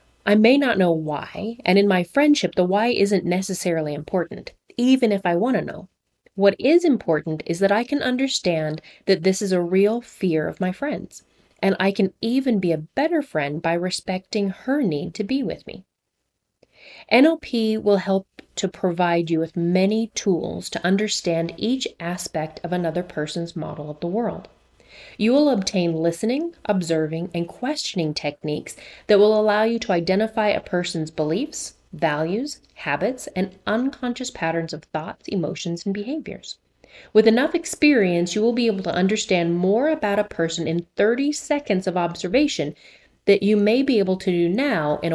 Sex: female